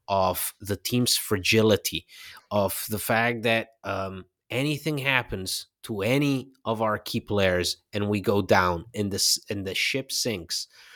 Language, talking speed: English, 150 wpm